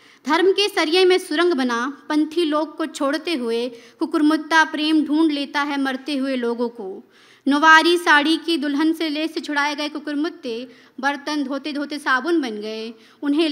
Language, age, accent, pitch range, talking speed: Hindi, 20-39, native, 265-315 Hz, 165 wpm